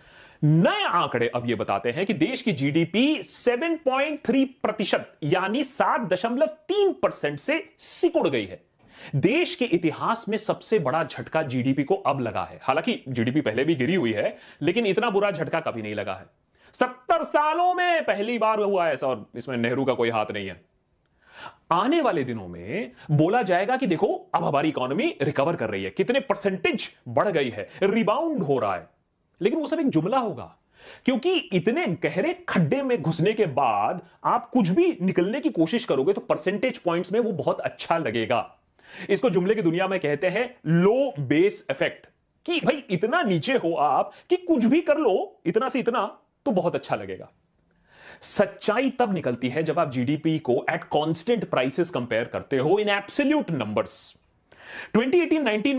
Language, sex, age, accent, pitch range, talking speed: Hindi, male, 30-49, native, 160-255 Hz, 175 wpm